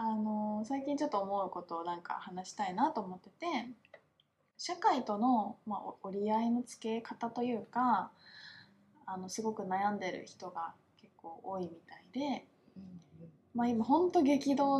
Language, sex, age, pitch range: Japanese, female, 20-39, 190-250 Hz